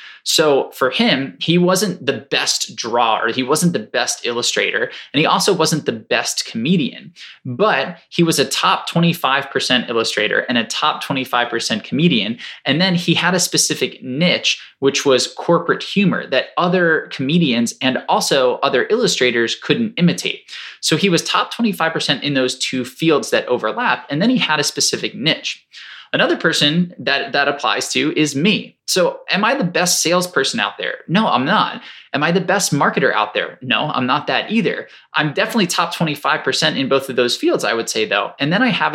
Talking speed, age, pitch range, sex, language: 180 wpm, 20-39, 135-180 Hz, male, English